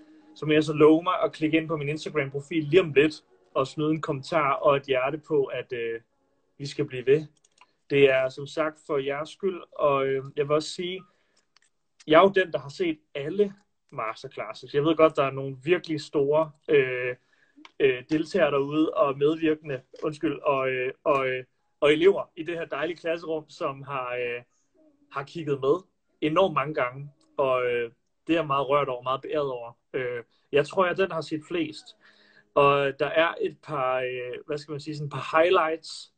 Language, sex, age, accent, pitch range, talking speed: Danish, male, 30-49, native, 140-165 Hz, 185 wpm